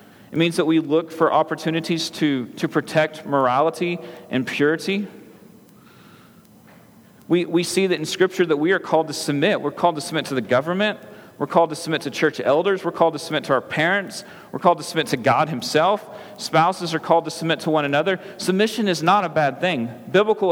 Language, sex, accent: English, male, American